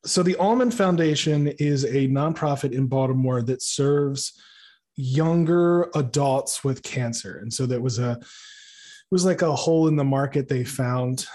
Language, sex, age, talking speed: English, male, 20-39, 160 wpm